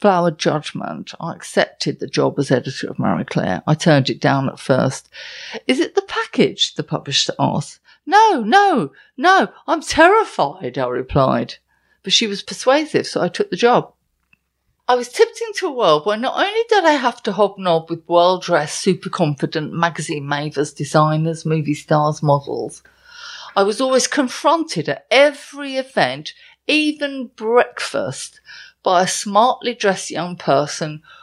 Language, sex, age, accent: English, female, 50-69, British